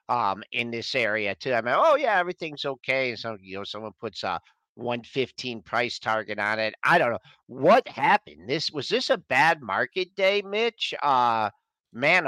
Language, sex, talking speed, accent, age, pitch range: English, male, 180 wpm, American, 50-69, 120-170 Hz